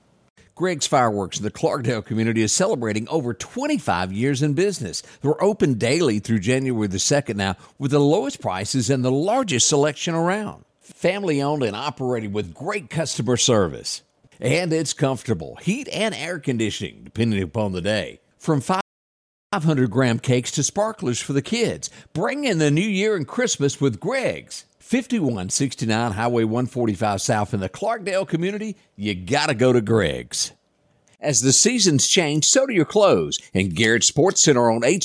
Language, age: English, 50-69